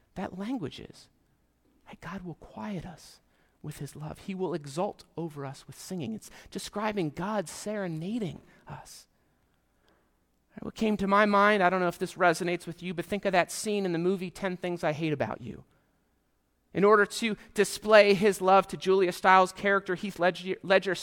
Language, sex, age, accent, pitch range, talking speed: English, male, 40-59, American, 155-205 Hz, 175 wpm